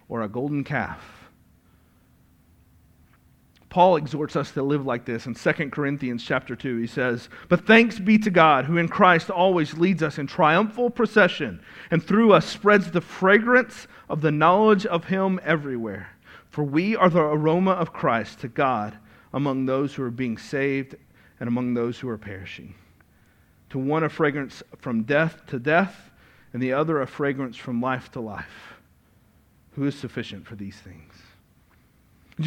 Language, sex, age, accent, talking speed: English, male, 40-59, American, 165 wpm